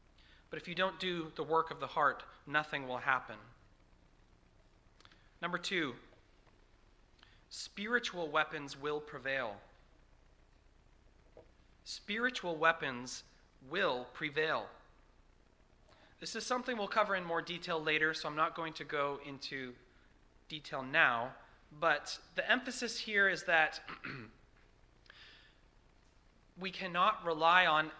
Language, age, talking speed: English, 30-49, 110 wpm